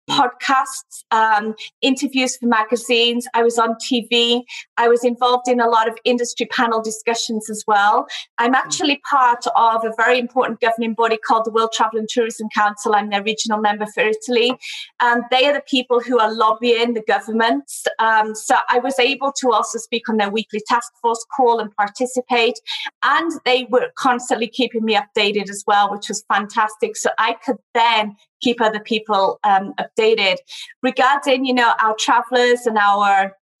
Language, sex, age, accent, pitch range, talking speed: English, female, 30-49, British, 220-250 Hz, 175 wpm